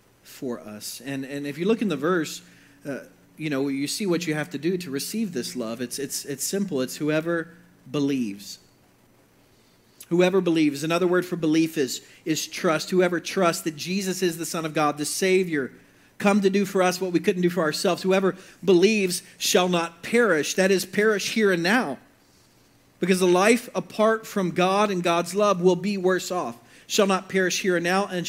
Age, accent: 40-59, American